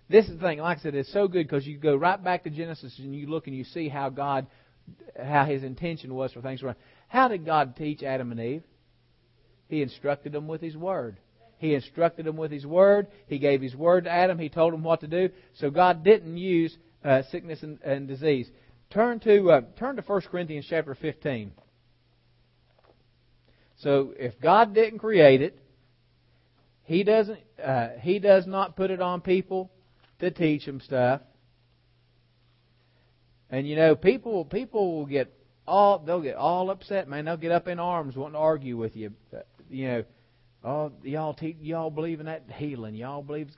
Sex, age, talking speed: male, 40-59, 190 wpm